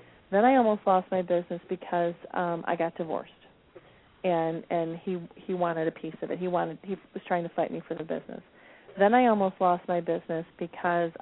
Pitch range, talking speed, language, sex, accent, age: 170-205 Hz, 205 wpm, English, female, American, 40-59